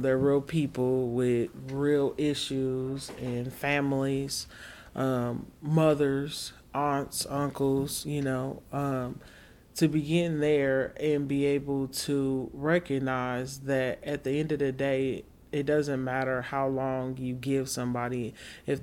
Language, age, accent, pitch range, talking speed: English, 30-49, American, 130-145 Hz, 125 wpm